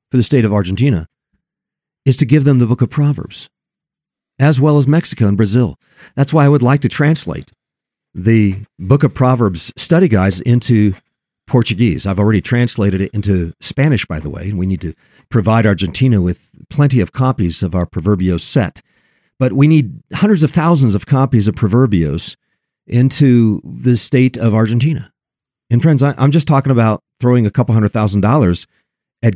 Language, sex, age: English, male, 50-69